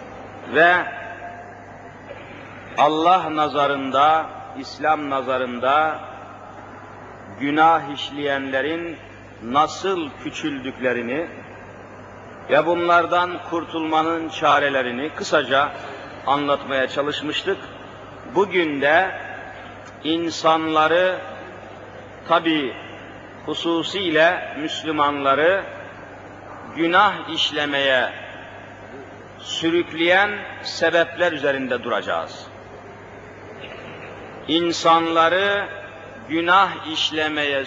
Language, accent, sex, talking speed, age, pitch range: Turkish, native, male, 50 wpm, 50-69, 130-170 Hz